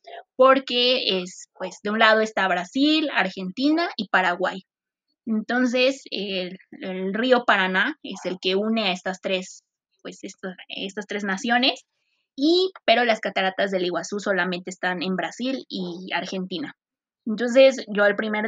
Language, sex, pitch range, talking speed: Spanish, female, 185-220 Hz, 140 wpm